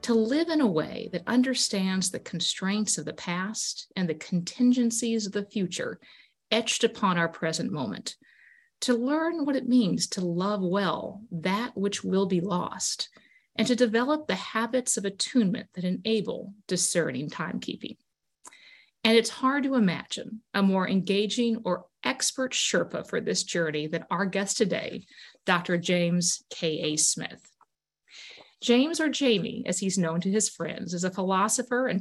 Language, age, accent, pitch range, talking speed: English, 50-69, American, 180-240 Hz, 155 wpm